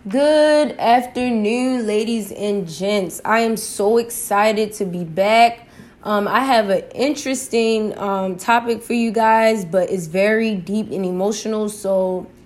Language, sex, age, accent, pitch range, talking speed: English, female, 10-29, American, 195-225 Hz, 140 wpm